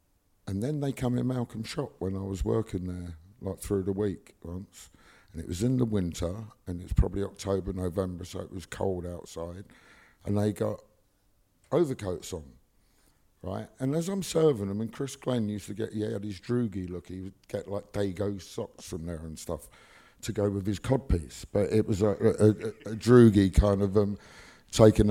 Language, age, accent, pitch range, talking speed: English, 50-69, British, 95-120 Hz, 195 wpm